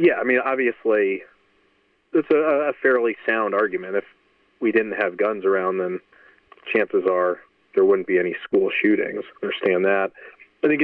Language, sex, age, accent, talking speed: English, male, 30-49, American, 160 wpm